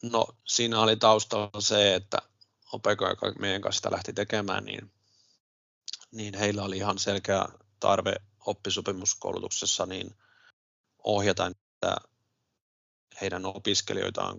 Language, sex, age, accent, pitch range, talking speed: Finnish, male, 30-49, native, 95-110 Hz, 105 wpm